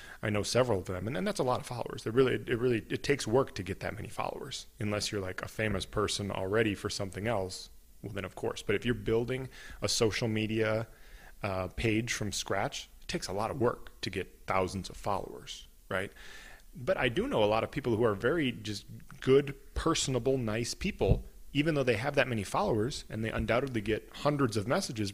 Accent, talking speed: American, 215 wpm